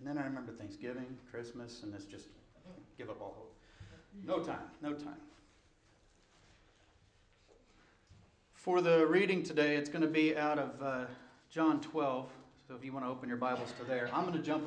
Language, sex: English, male